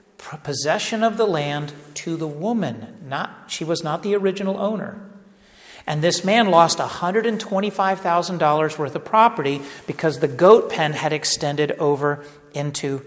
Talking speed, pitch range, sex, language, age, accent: 140 wpm, 150-200 Hz, male, English, 40-59, American